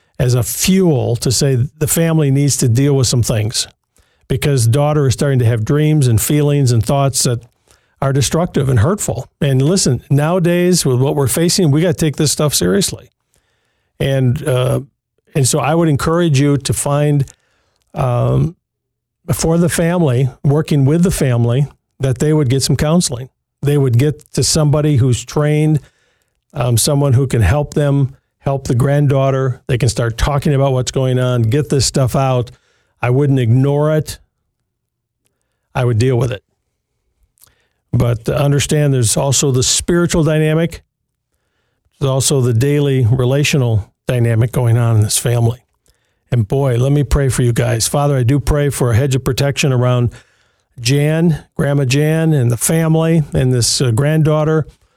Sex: male